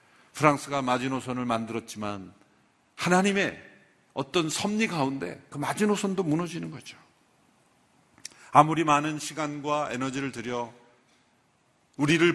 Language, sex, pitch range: Korean, male, 115-170 Hz